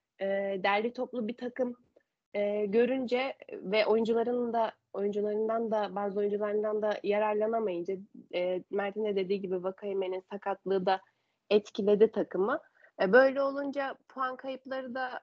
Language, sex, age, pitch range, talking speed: Turkish, female, 30-49, 200-235 Hz, 120 wpm